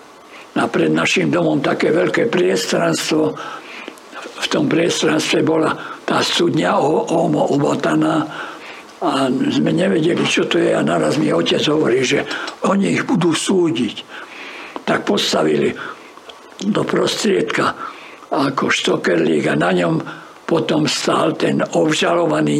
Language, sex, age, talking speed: Slovak, male, 60-79, 115 wpm